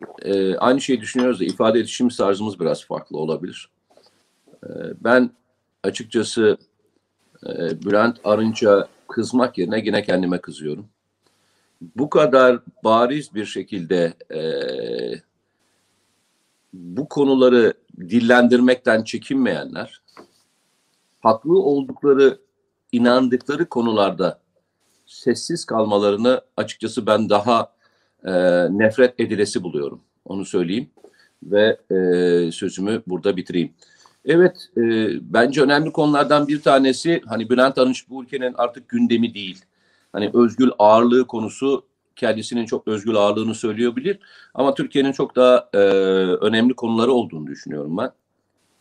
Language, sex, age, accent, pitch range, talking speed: Turkish, male, 50-69, native, 105-135 Hz, 105 wpm